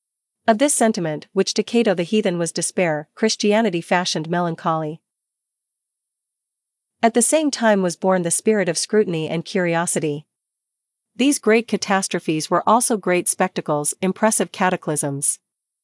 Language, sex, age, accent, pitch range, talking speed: English, female, 40-59, American, 165-205 Hz, 130 wpm